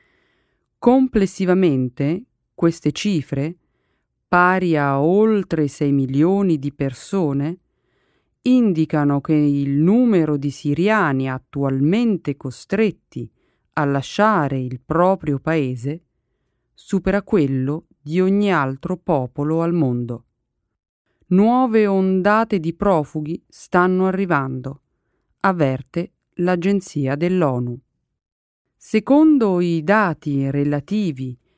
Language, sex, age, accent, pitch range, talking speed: Italian, female, 40-59, native, 145-200 Hz, 85 wpm